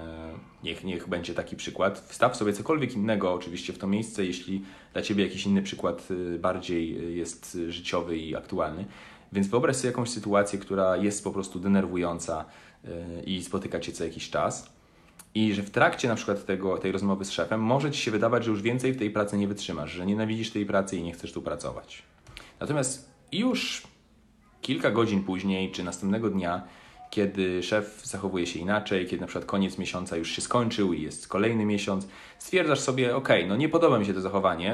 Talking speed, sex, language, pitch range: 185 wpm, male, Polish, 90-115 Hz